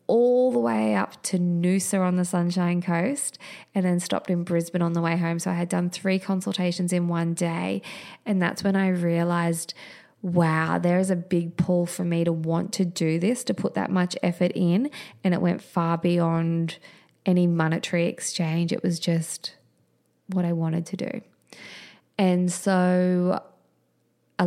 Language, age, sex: English, 20-39, female